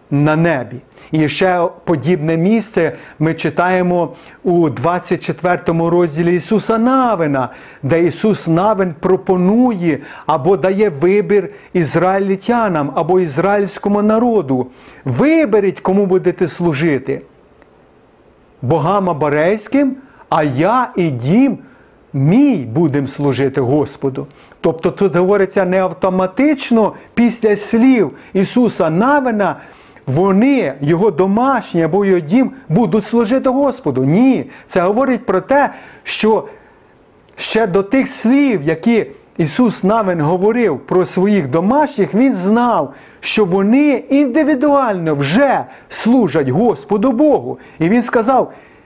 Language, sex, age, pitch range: Ukrainian, male, 40-59, 165-235 Hz